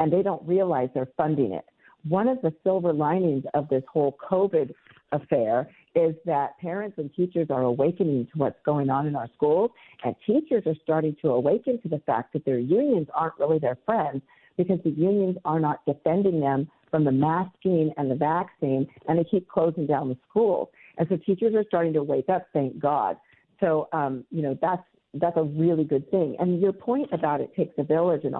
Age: 50-69